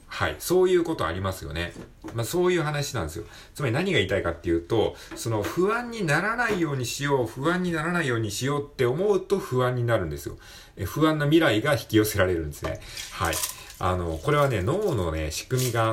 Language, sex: Japanese, male